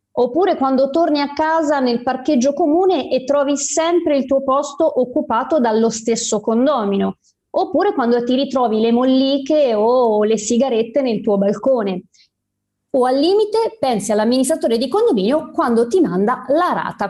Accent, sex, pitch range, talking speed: native, female, 215-290 Hz, 145 wpm